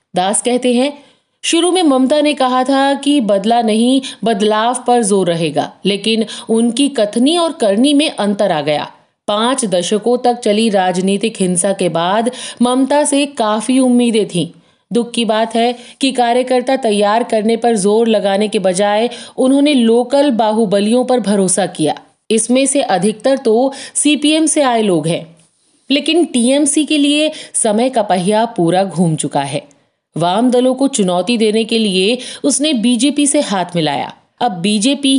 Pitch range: 195-260 Hz